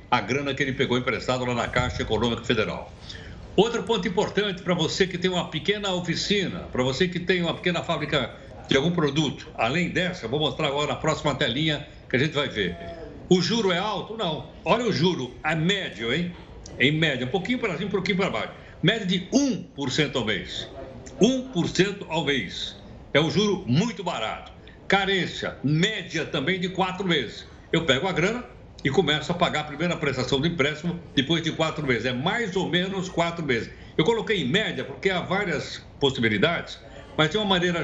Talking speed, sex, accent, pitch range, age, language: 190 wpm, male, Brazilian, 140-185 Hz, 60-79, Portuguese